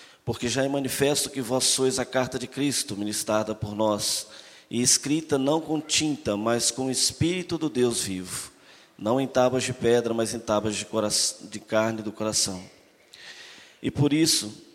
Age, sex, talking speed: 20-39, male, 175 wpm